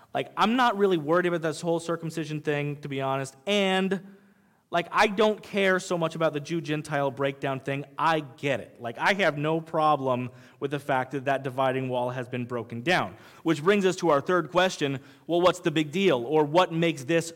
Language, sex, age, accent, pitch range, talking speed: English, male, 30-49, American, 140-185 Hz, 210 wpm